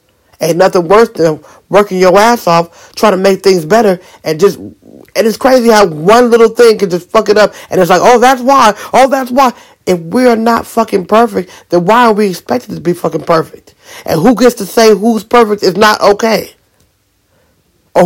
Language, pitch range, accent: English, 155-230 Hz, American